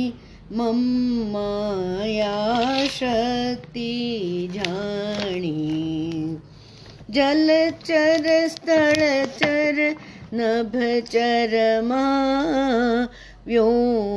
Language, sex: Hindi, female